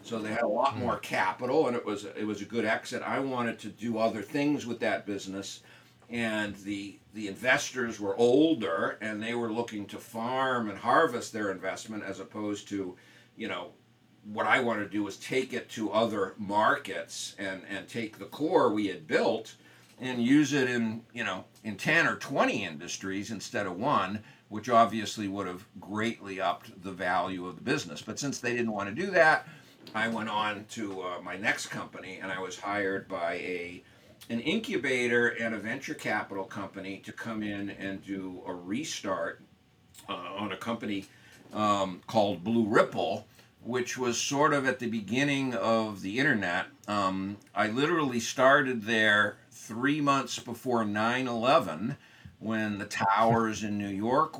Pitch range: 100-120 Hz